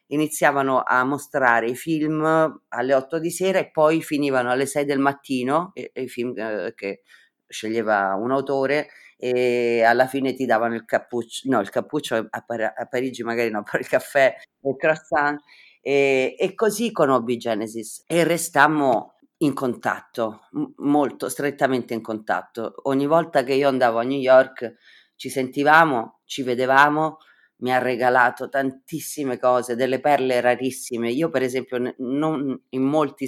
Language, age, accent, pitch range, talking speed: Italian, 30-49, native, 125-155 Hz, 150 wpm